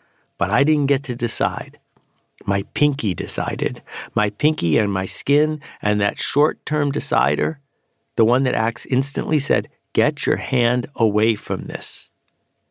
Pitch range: 110-140 Hz